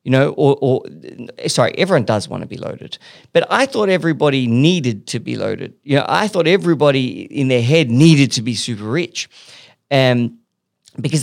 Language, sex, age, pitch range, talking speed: English, male, 40-59, 130-175 Hz, 180 wpm